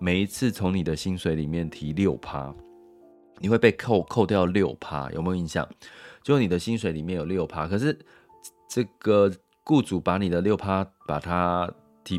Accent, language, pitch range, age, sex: native, Chinese, 80-100 Hz, 30-49, male